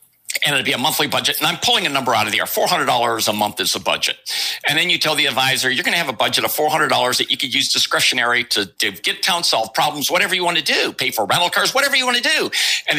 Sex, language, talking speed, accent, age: male, English, 280 wpm, American, 60-79